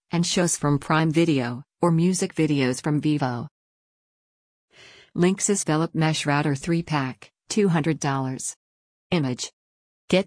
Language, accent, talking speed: English, American, 105 wpm